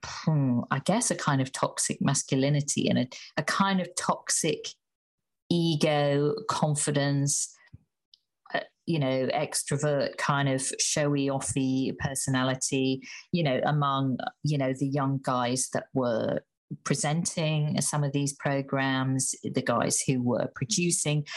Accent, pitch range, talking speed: British, 130-155 Hz, 120 wpm